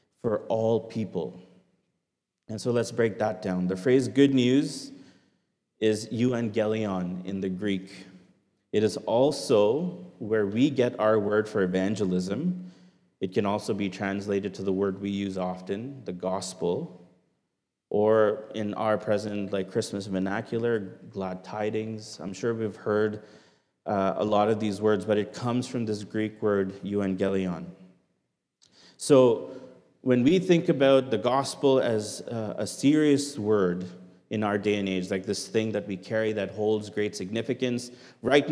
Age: 30-49